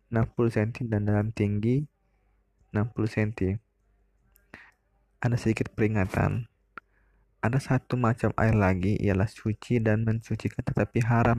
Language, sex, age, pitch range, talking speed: Indonesian, male, 20-39, 100-110 Hz, 105 wpm